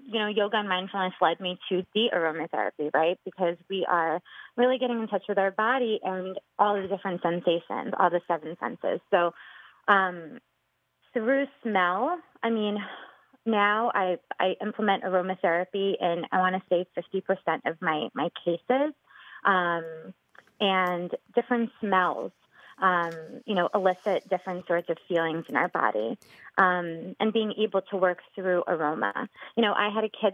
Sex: female